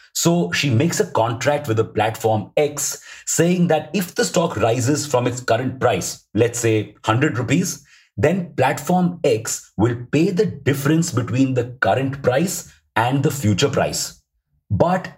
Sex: male